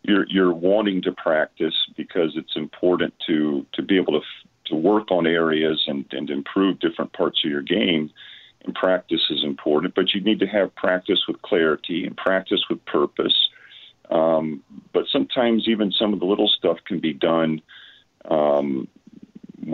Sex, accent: male, American